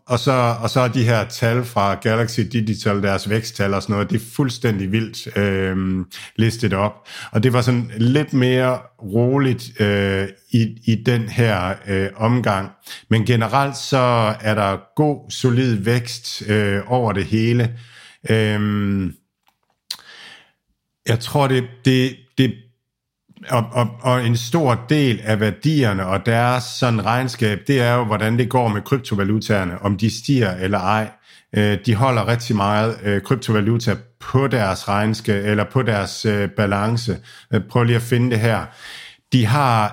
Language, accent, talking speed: Danish, native, 140 wpm